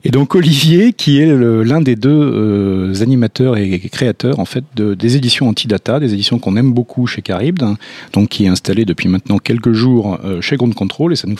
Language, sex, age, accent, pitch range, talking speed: French, male, 40-59, French, 100-135 Hz, 205 wpm